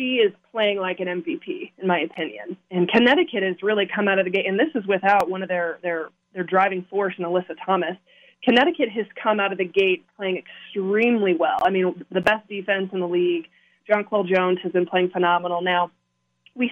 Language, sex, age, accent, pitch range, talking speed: English, female, 20-39, American, 180-210 Hz, 210 wpm